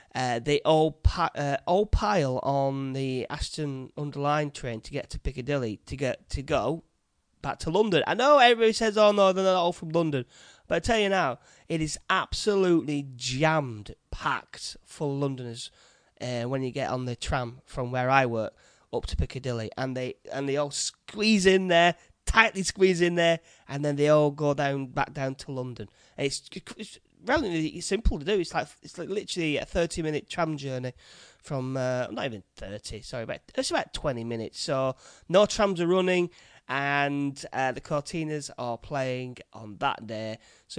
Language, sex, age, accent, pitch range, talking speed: English, male, 30-49, British, 130-180 Hz, 180 wpm